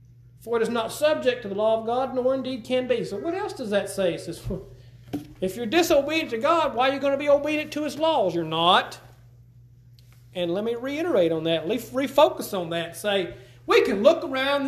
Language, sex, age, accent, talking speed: English, male, 40-59, American, 215 wpm